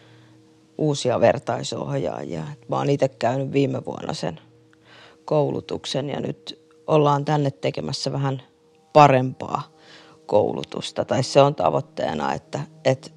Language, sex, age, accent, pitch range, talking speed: Finnish, female, 30-49, native, 130-155 Hz, 110 wpm